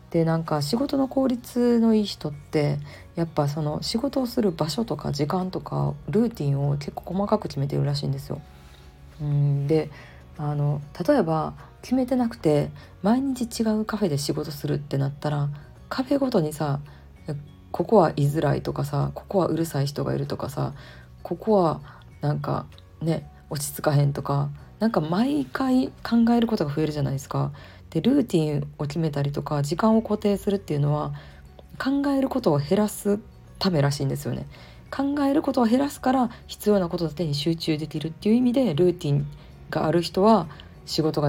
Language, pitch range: Japanese, 140-215 Hz